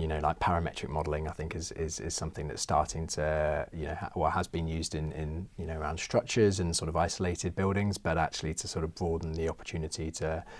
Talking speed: 230 wpm